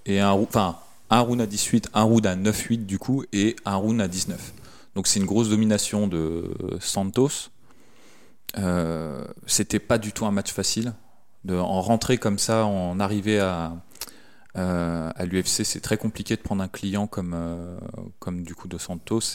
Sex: male